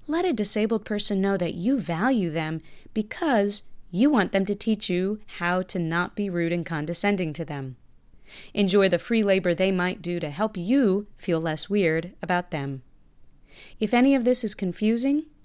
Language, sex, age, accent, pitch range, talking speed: English, female, 30-49, American, 175-220 Hz, 180 wpm